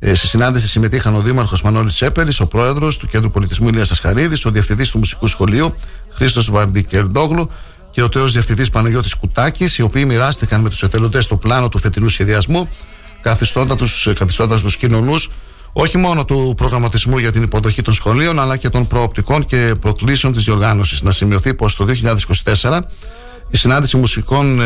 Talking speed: 165 wpm